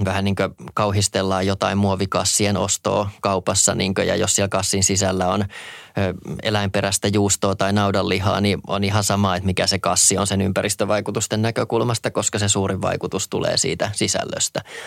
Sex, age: male, 20-39